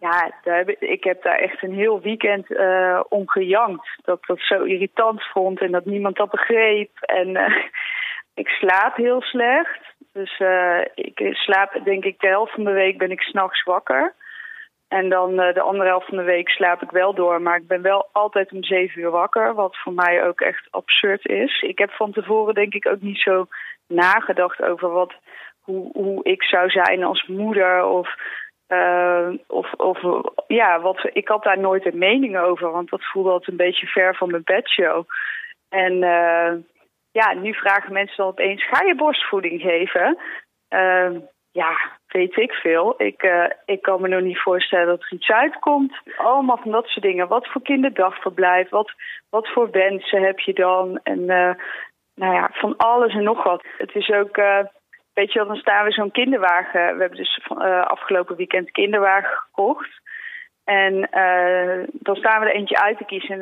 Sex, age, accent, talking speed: female, 20-39, Dutch, 185 wpm